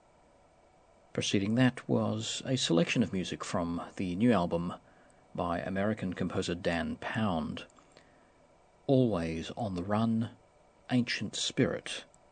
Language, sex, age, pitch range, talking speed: English, male, 50-69, 85-120 Hz, 105 wpm